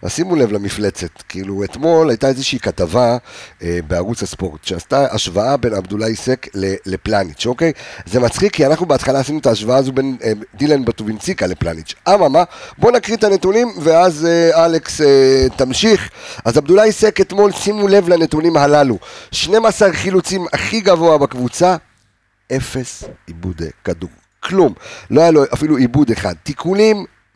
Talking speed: 145 wpm